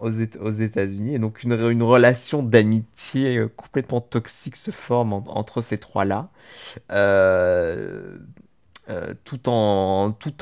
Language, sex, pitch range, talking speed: French, male, 105-120 Hz, 120 wpm